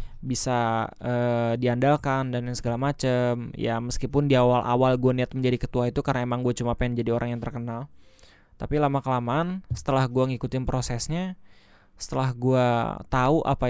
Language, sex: Indonesian, male